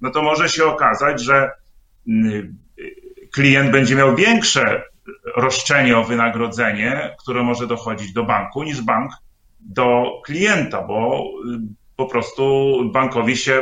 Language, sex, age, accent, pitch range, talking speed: Polish, male, 40-59, native, 120-145 Hz, 120 wpm